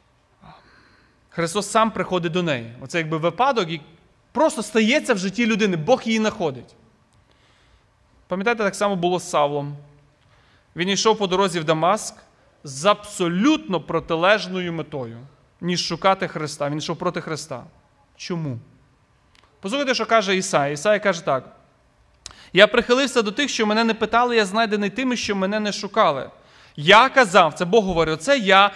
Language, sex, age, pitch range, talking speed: Ukrainian, male, 30-49, 150-215 Hz, 145 wpm